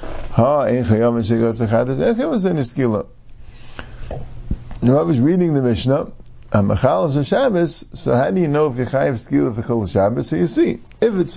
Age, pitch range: 50-69, 110-170 Hz